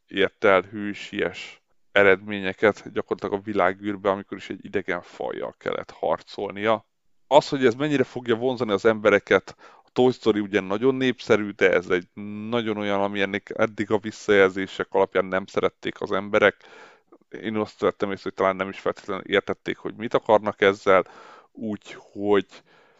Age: 30-49